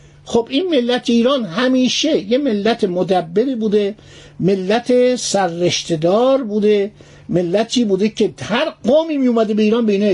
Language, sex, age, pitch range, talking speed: Persian, male, 60-79, 185-250 Hz, 130 wpm